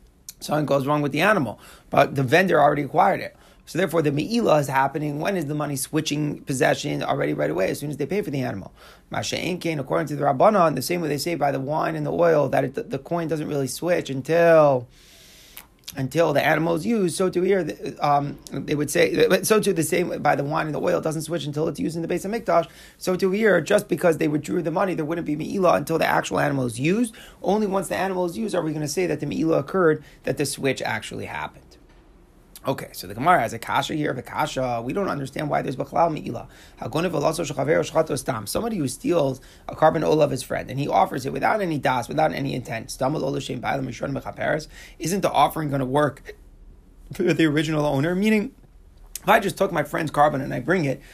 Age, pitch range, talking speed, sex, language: 30-49, 145-175 Hz, 220 wpm, male, English